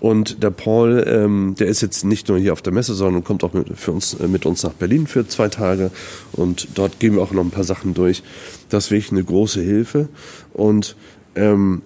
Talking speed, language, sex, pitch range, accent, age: 215 wpm, German, male, 85-105 Hz, German, 40-59